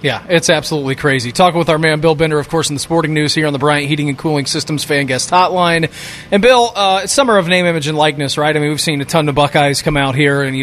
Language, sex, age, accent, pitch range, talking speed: English, male, 30-49, American, 160-205 Hz, 290 wpm